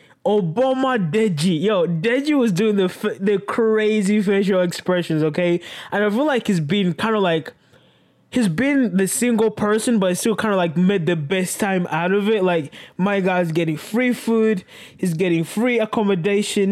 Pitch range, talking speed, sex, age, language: 165-215 Hz, 175 wpm, male, 20-39, English